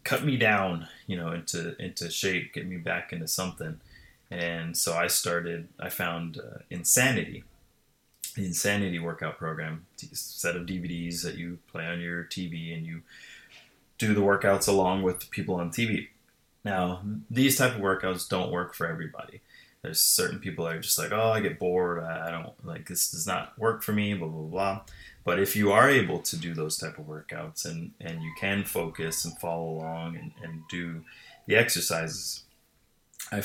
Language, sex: English, male